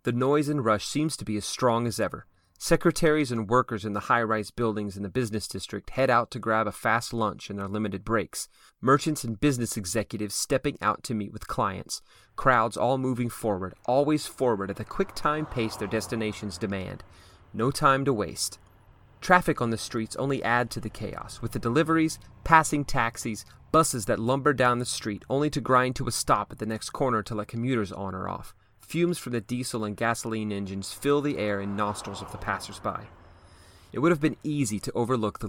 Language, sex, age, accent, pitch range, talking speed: English, male, 30-49, American, 105-125 Hz, 205 wpm